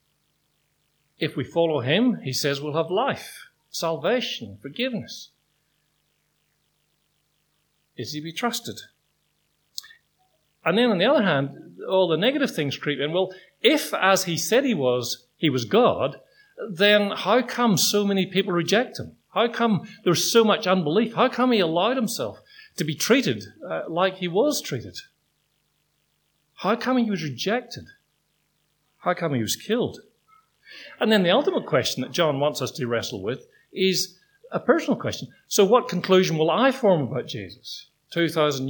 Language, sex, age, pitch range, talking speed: English, male, 50-69, 150-220 Hz, 155 wpm